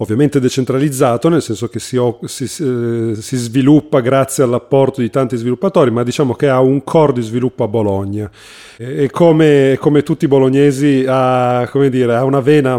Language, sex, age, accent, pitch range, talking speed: Italian, male, 40-59, native, 120-145 Hz, 150 wpm